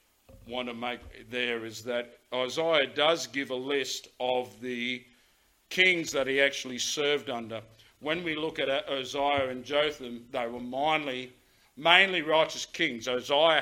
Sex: male